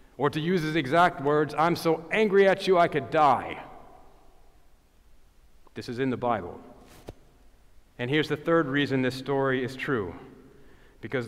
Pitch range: 120-150 Hz